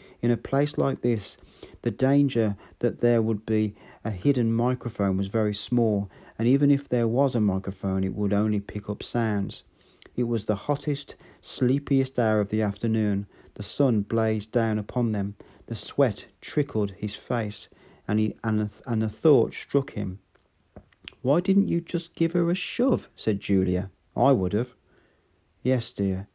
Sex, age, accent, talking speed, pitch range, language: male, 40-59, British, 160 wpm, 100-125 Hz, English